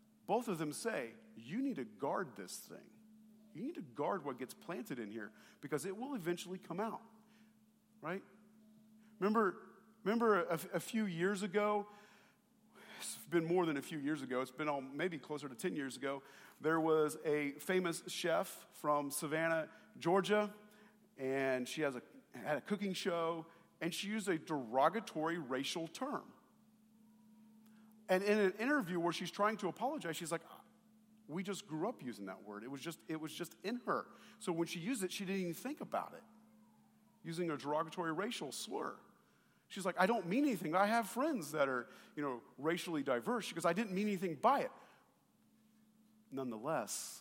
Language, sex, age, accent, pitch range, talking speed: English, male, 40-59, American, 160-220 Hz, 175 wpm